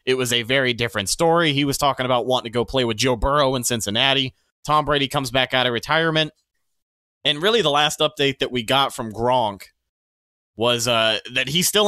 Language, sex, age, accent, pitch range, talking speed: English, male, 30-49, American, 125-160 Hz, 205 wpm